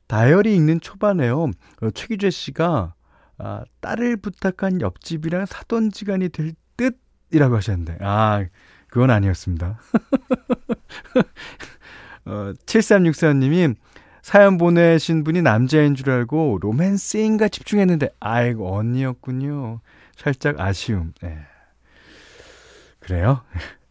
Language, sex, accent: Korean, male, native